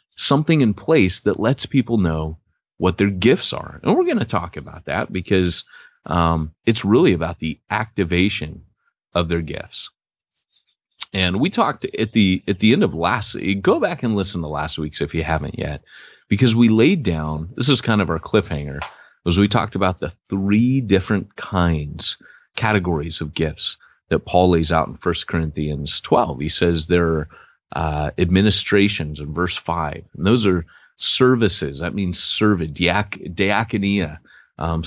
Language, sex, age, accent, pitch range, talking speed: English, male, 30-49, American, 80-110 Hz, 165 wpm